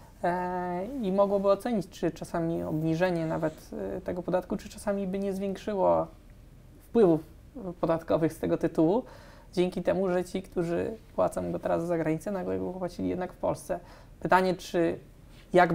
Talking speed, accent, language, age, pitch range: 145 wpm, native, Polish, 20-39, 160-185 Hz